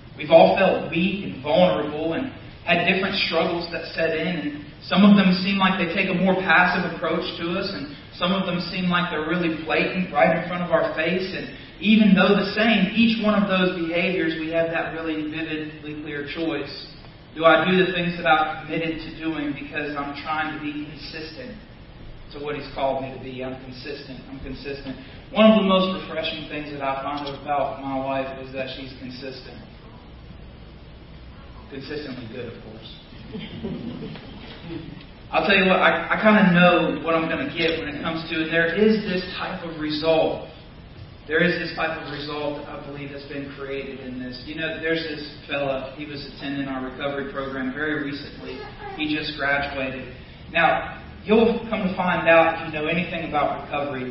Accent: American